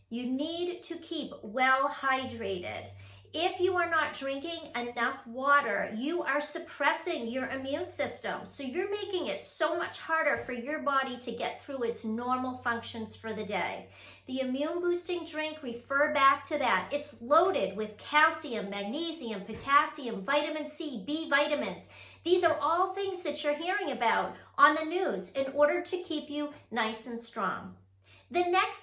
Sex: female